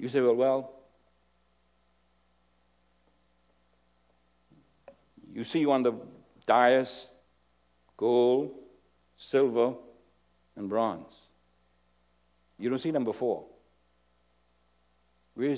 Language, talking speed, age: English, 75 wpm, 60-79